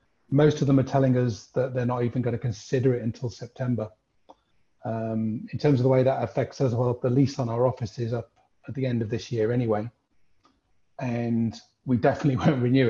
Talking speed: 210 wpm